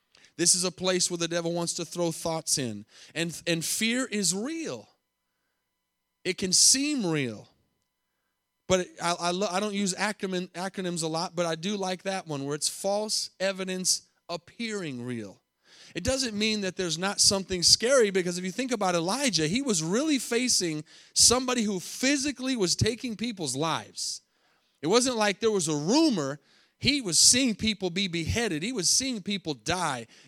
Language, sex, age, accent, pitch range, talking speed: English, male, 30-49, American, 170-210 Hz, 165 wpm